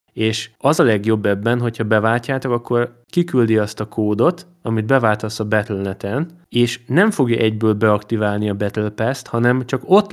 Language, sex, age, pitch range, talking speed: Hungarian, male, 20-39, 105-125 Hz, 160 wpm